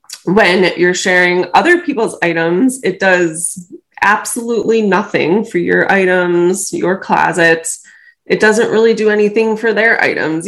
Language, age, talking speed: English, 20-39, 130 wpm